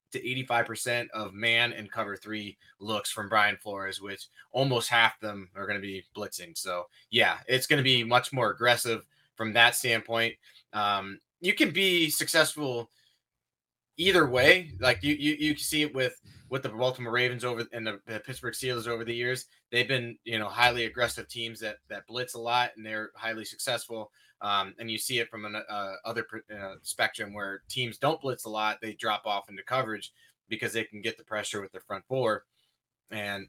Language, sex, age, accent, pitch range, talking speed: English, male, 20-39, American, 105-125 Hz, 195 wpm